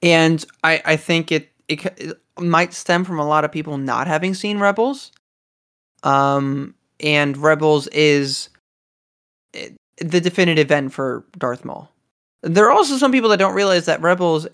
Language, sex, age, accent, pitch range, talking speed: English, male, 20-39, American, 140-175 Hz, 155 wpm